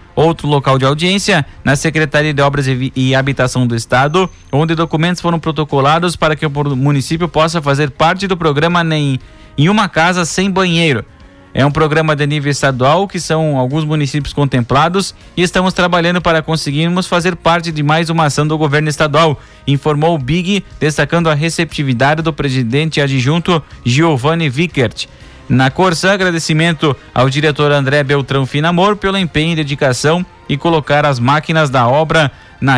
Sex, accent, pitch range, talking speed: male, Brazilian, 140-165 Hz, 155 wpm